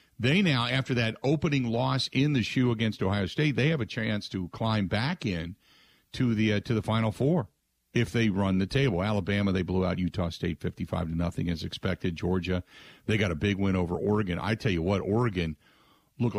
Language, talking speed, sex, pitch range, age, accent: English, 210 wpm, male, 95-130 Hz, 50-69, American